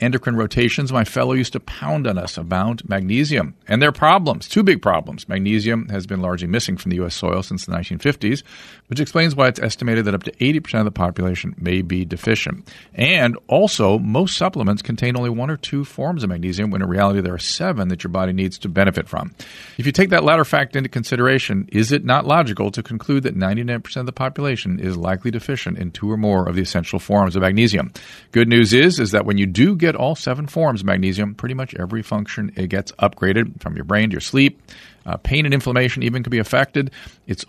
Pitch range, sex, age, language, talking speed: 95-130 Hz, male, 40-59, English, 220 wpm